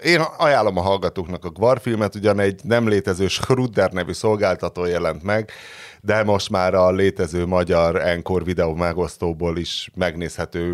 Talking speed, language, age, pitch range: 150 wpm, Hungarian, 30-49, 90-110 Hz